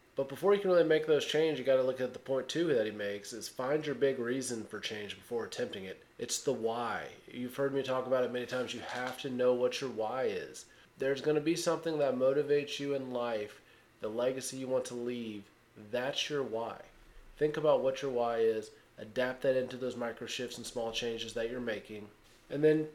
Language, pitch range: English, 120-145 Hz